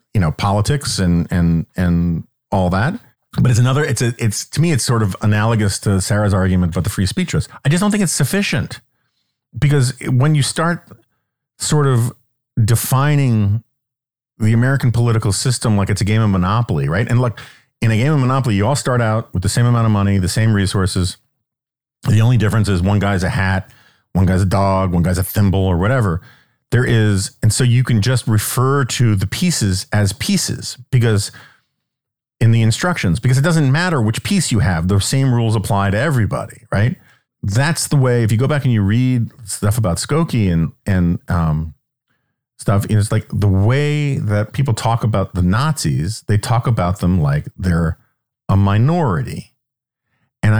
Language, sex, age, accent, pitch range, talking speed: English, male, 40-59, American, 100-130 Hz, 185 wpm